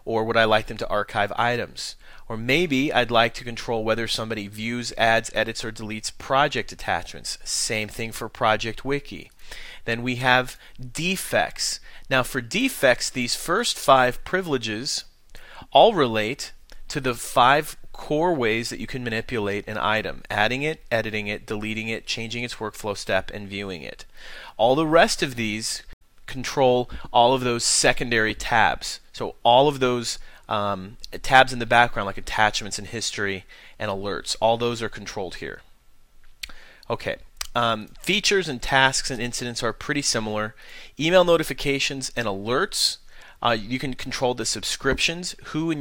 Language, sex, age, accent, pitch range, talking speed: English, male, 30-49, American, 110-130 Hz, 155 wpm